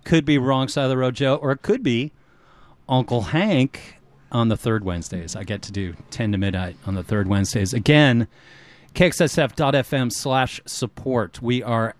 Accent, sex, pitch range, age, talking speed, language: American, male, 110-135 Hz, 30-49, 175 wpm, English